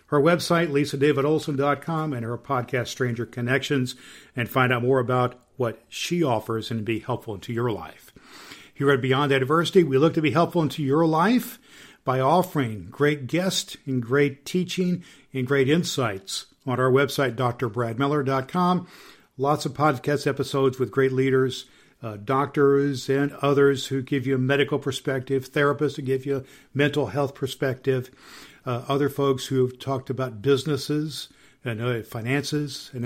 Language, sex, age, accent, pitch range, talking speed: English, male, 50-69, American, 120-145 Hz, 150 wpm